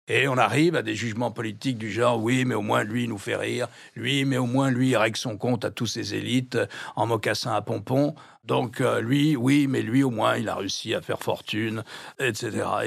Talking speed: 235 wpm